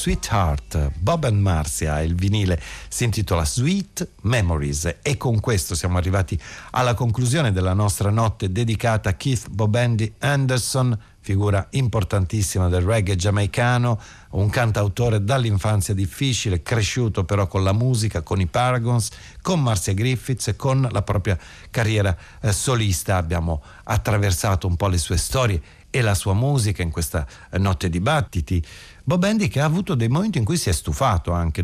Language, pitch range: Italian, 90-115 Hz